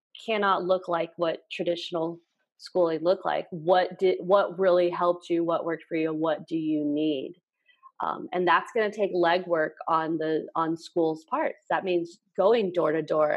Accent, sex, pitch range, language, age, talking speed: American, female, 165-200 Hz, English, 30-49, 180 wpm